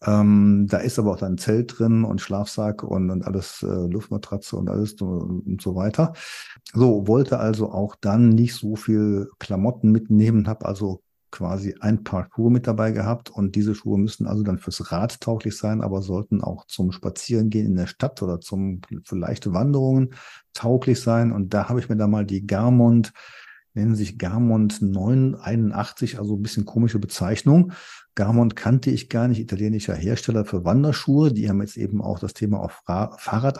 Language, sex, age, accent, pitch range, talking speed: German, male, 50-69, German, 100-120 Hz, 180 wpm